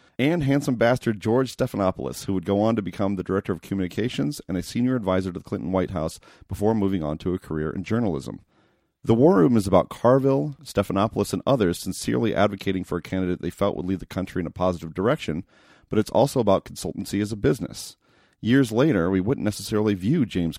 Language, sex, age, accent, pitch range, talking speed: English, male, 40-59, American, 90-115 Hz, 205 wpm